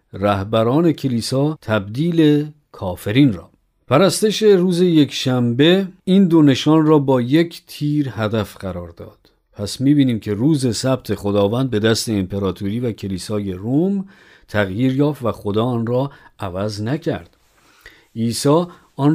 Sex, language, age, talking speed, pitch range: male, Persian, 50-69, 125 wpm, 105-145 Hz